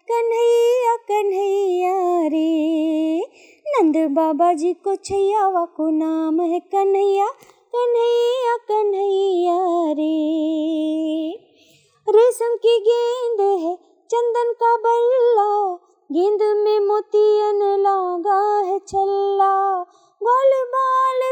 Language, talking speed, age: Hindi, 80 wpm, 20-39